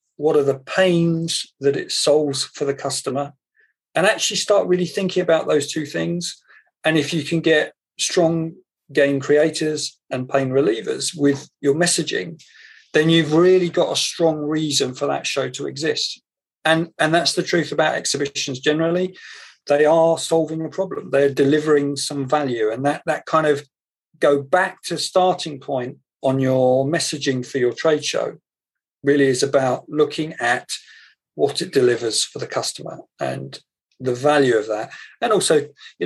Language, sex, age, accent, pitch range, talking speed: English, male, 40-59, British, 135-160 Hz, 165 wpm